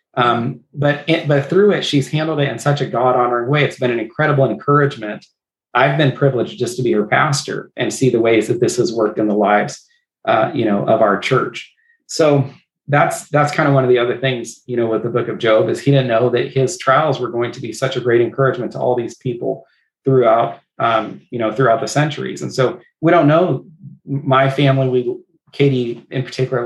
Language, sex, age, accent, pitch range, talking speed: English, male, 30-49, American, 125-145 Hz, 220 wpm